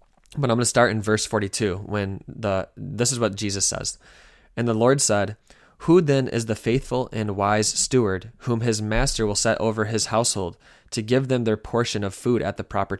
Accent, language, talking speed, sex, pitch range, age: American, English, 210 wpm, male, 100-125 Hz, 20-39